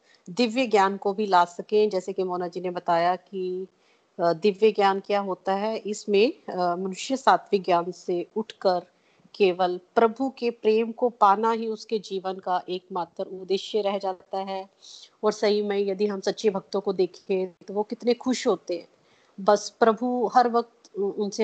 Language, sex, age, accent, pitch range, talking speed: Hindi, female, 30-49, native, 190-215 Hz, 165 wpm